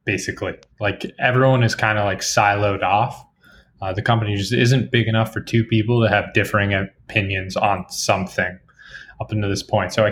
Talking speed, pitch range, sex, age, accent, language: 185 wpm, 100-120 Hz, male, 20-39, American, English